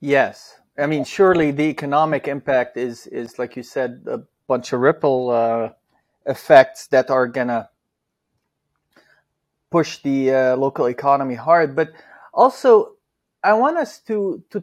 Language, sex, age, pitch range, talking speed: English, male, 30-49, 145-185 Hz, 145 wpm